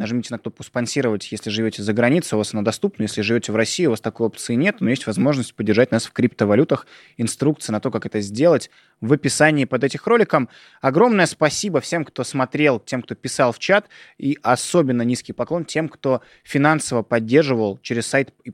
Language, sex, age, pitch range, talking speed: Russian, male, 20-39, 115-140 Hz, 195 wpm